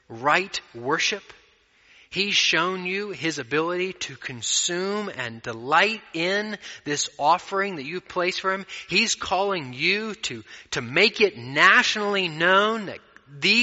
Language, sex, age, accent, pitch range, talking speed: English, male, 30-49, American, 125-195 Hz, 130 wpm